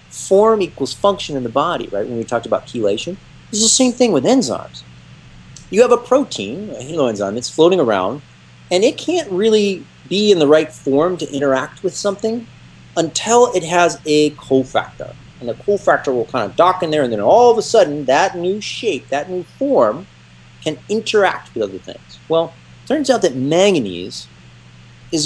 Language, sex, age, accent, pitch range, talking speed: English, male, 40-59, American, 125-205 Hz, 190 wpm